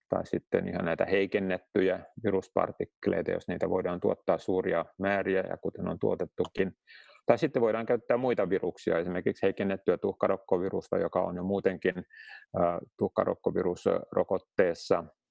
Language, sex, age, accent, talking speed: Finnish, male, 30-49, native, 120 wpm